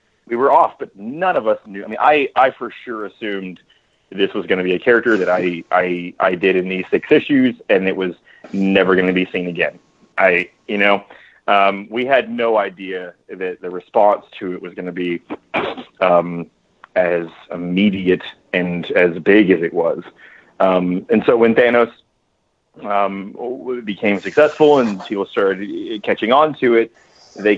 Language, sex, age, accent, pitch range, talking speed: English, male, 30-49, American, 95-125 Hz, 175 wpm